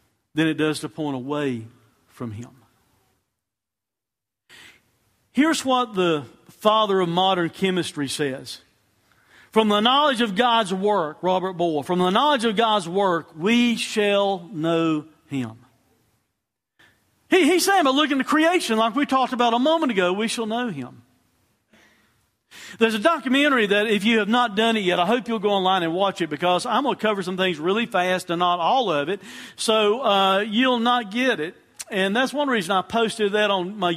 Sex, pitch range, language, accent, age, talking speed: male, 150-215 Hz, English, American, 50-69, 175 wpm